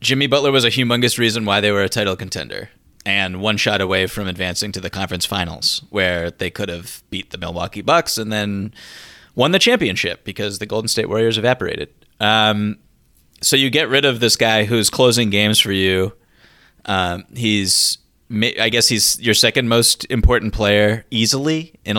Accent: American